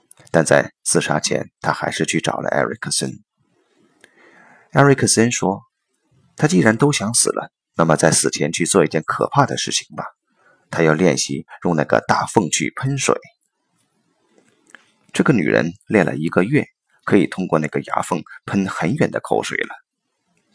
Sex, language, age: male, Chinese, 30-49